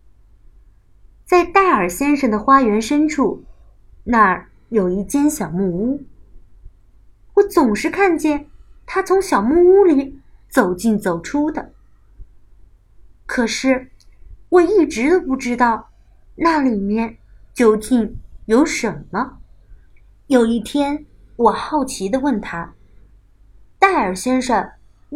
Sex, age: female, 30-49